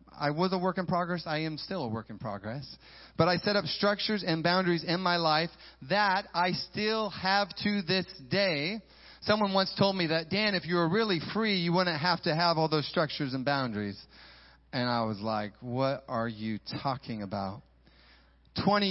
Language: English